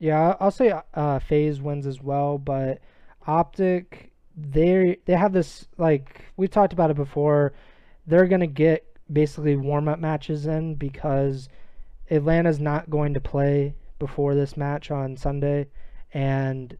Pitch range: 140-155 Hz